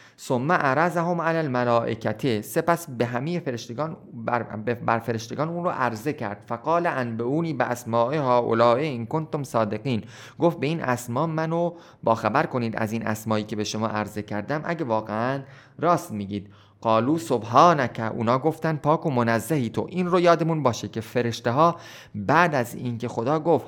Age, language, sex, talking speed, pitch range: 30-49, Persian, male, 160 wpm, 115-160 Hz